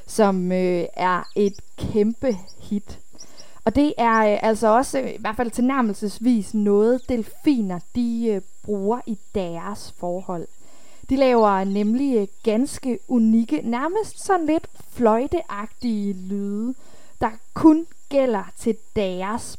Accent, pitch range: native, 200-245 Hz